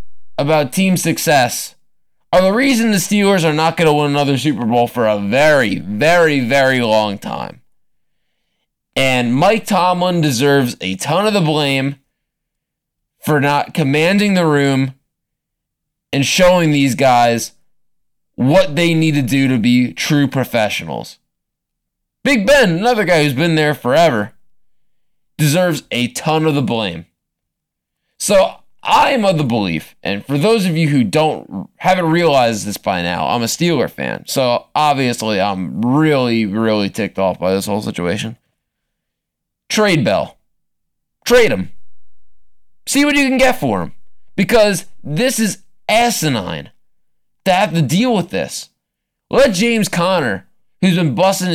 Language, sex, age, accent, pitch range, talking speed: English, male, 20-39, American, 125-185 Hz, 145 wpm